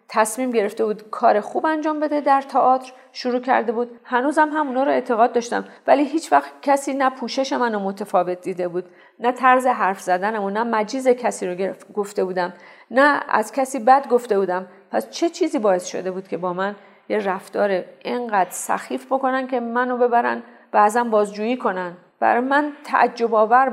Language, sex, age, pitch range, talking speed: Persian, female, 40-59, 200-265 Hz, 175 wpm